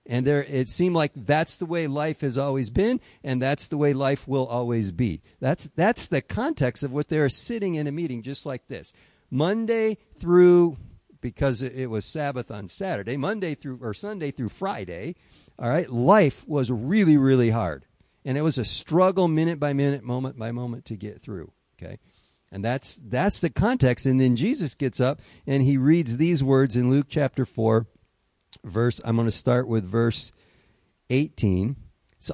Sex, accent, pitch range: male, American, 110-145 Hz